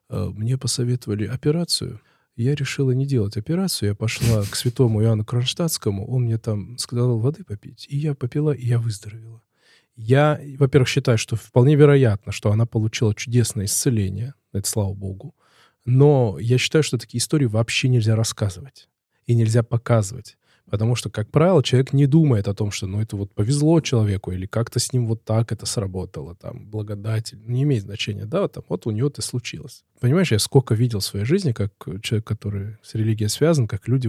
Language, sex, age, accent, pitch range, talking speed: Russian, male, 20-39, native, 105-130 Hz, 180 wpm